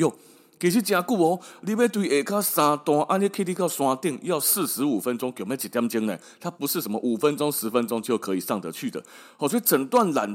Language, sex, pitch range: Chinese, male, 120-195 Hz